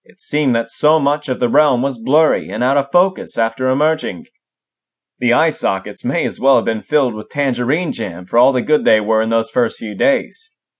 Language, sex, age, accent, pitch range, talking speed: English, male, 20-39, American, 125-175 Hz, 215 wpm